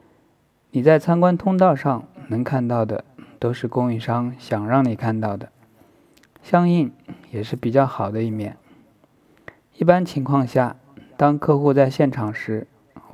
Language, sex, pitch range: Chinese, male, 115-140 Hz